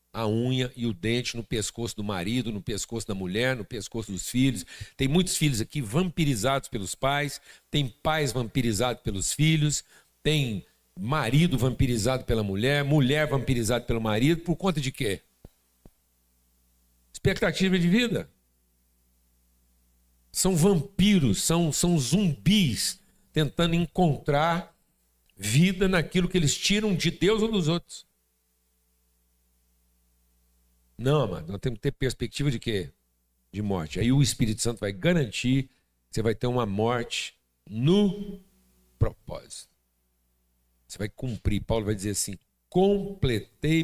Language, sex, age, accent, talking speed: Portuguese, male, 60-79, Brazilian, 130 wpm